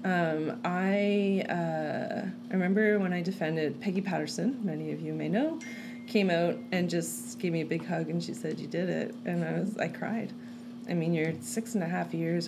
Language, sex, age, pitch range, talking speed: English, female, 30-49, 160-230 Hz, 205 wpm